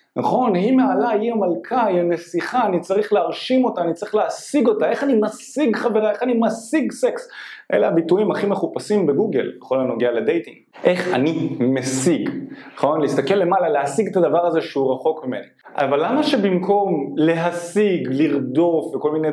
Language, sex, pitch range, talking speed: Hebrew, male, 140-215 Hz, 160 wpm